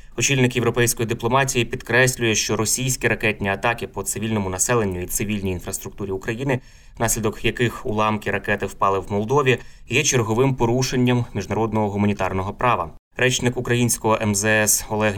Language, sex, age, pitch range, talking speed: Ukrainian, male, 20-39, 100-120 Hz, 125 wpm